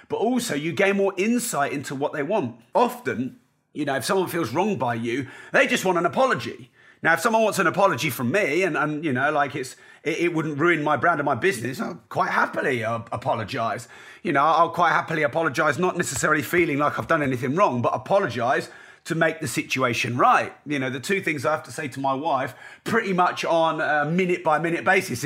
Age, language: 40-59, English